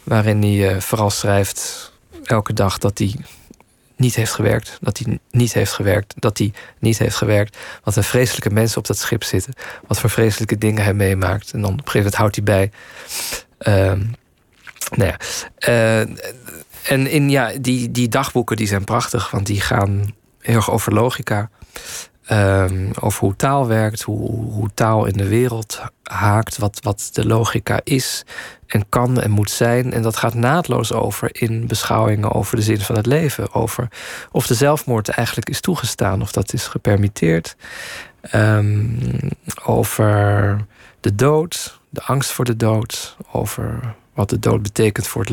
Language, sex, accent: Dutch, male, Dutch